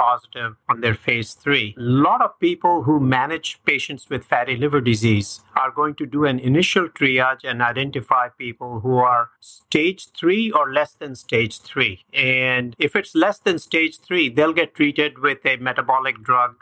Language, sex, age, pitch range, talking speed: English, male, 50-69, 125-145 Hz, 175 wpm